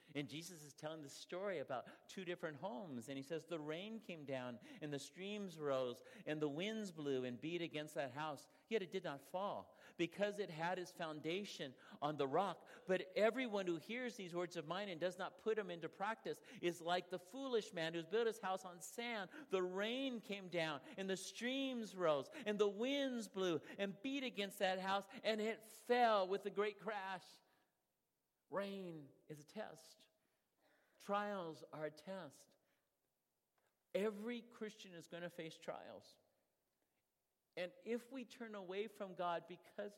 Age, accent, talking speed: 50-69, American, 175 wpm